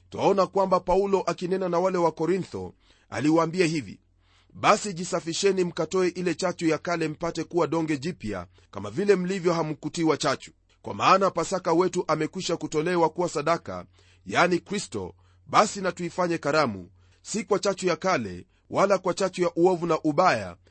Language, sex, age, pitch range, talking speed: Swahili, male, 40-59, 135-185 Hz, 150 wpm